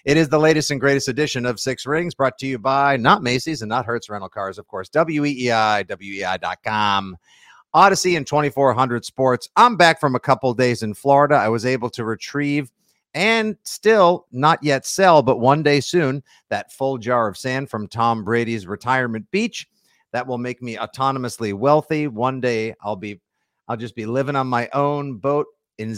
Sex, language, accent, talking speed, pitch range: male, English, American, 185 wpm, 115-140 Hz